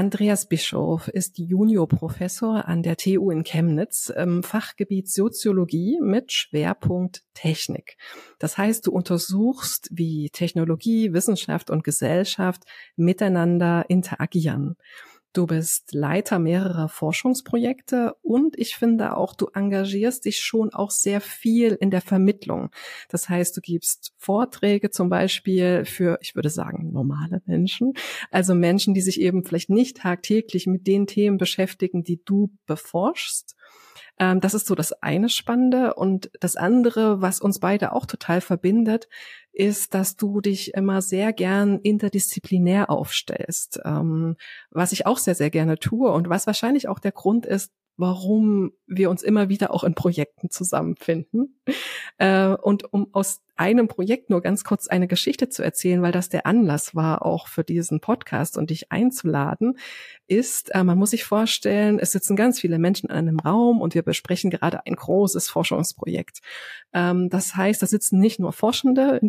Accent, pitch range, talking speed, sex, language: German, 175-215 Hz, 150 wpm, female, German